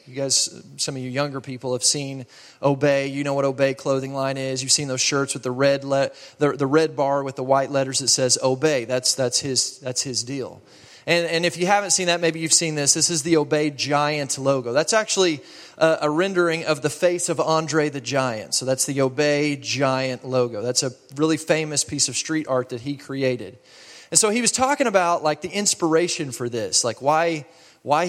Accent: American